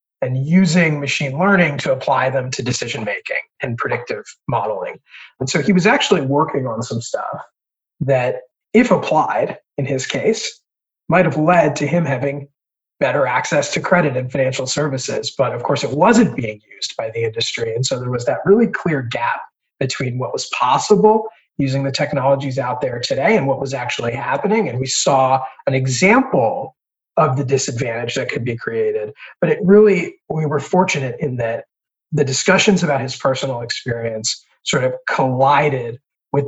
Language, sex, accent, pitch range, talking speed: English, male, American, 130-175 Hz, 170 wpm